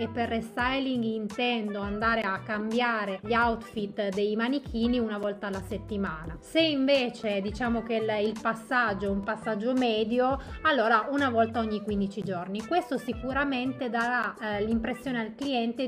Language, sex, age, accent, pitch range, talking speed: Italian, female, 30-49, native, 215-255 Hz, 145 wpm